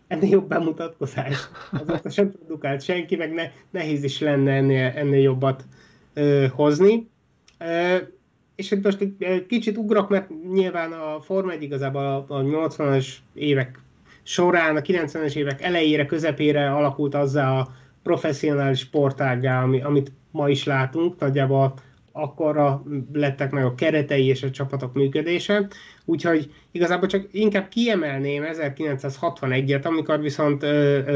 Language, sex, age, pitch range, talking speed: Hungarian, male, 30-49, 140-175 Hz, 135 wpm